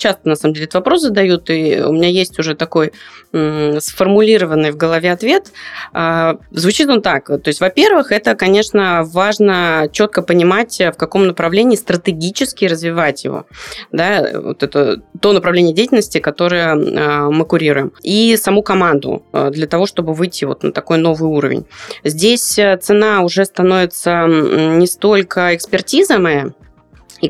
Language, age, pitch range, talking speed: Russian, 20-39, 160-195 Hz, 140 wpm